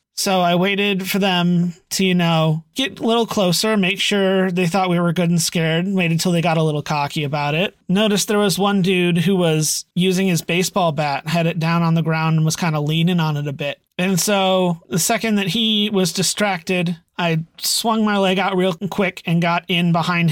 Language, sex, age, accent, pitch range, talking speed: English, male, 30-49, American, 160-195 Hz, 220 wpm